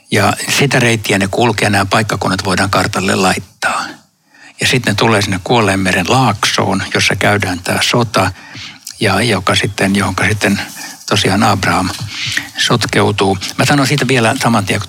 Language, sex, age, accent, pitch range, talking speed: Finnish, male, 60-79, native, 100-120 Hz, 135 wpm